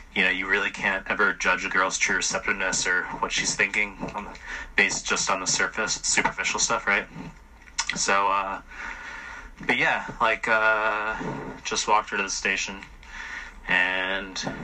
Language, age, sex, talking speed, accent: English, 20-39, male, 150 wpm, American